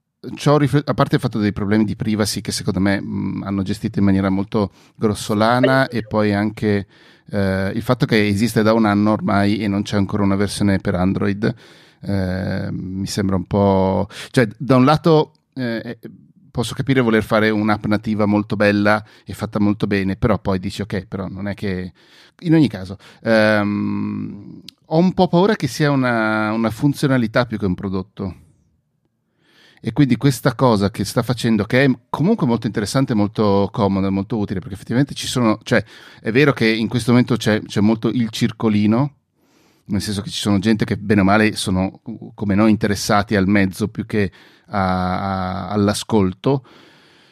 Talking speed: 175 wpm